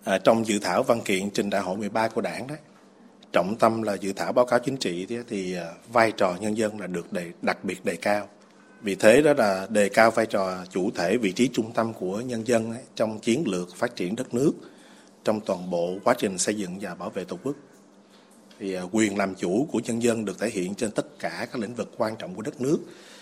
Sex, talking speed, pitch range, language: male, 245 wpm, 100-120 Hz, Vietnamese